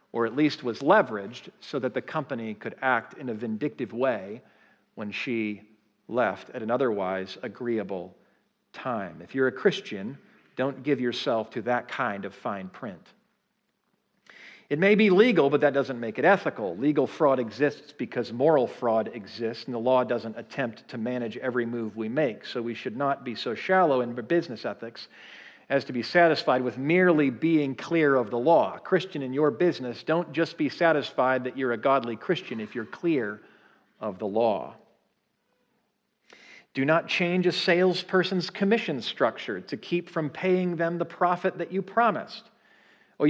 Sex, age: male, 50-69